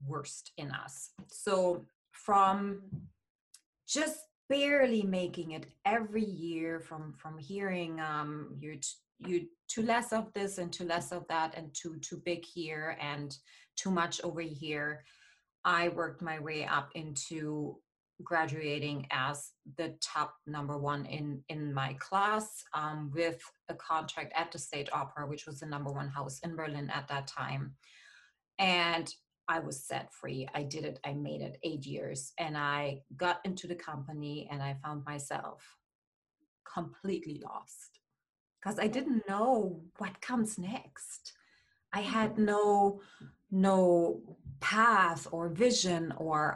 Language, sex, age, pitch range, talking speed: English, female, 30-49, 150-190 Hz, 145 wpm